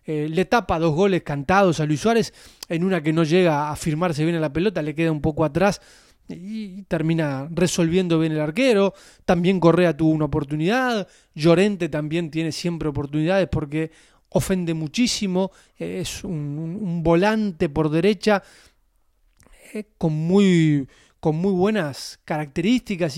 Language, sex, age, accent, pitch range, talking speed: Spanish, male, 20-39, Argentinian, 160-210 Hz, 150 wpm